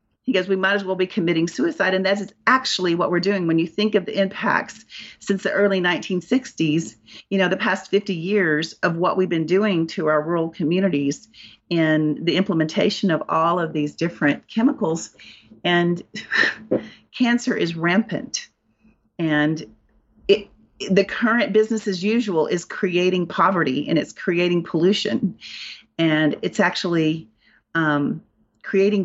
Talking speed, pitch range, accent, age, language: 150 wpm, 160-200 Hz, American, 40-59, English